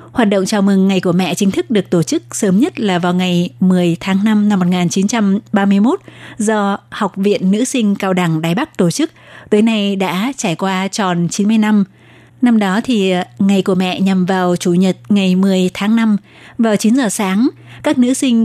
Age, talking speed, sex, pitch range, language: 20-39, 200 wpm, female, 185-215 Hz, Vietnamese